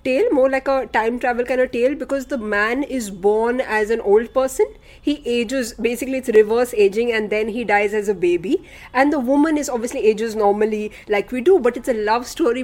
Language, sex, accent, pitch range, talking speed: English, female, Indian, 220-270 Hz, 220 wpm